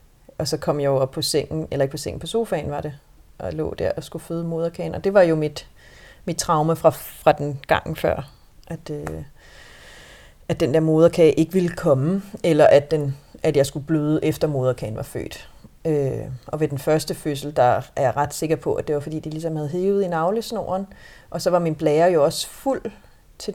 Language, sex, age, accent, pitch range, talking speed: Danish, female, 30-49, native, 145-170 Hz, 215 wpm